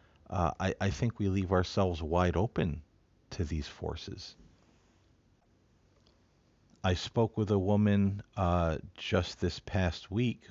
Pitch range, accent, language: 80-100 Hz, American, English